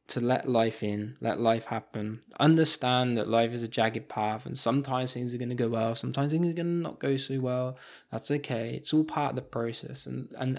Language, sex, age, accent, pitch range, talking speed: English, male, 20-39, British, 125-160 Hz, 230 wpm